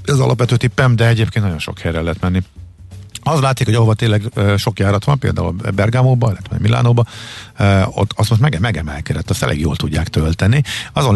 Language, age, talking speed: Hungarian, 50-69, 190 wpm